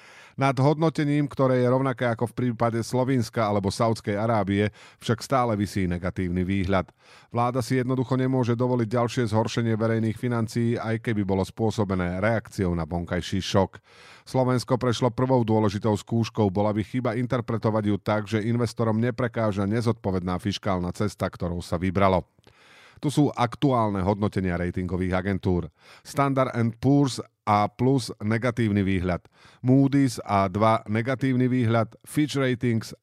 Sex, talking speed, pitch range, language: male, 135 wpm, 100-130 Hz, Slovak